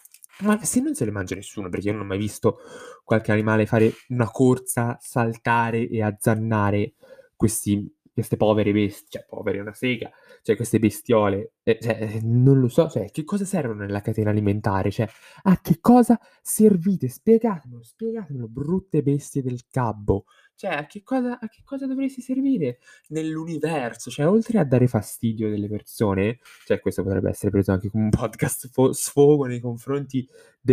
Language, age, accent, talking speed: Italian, 20-39, native, 160 wpm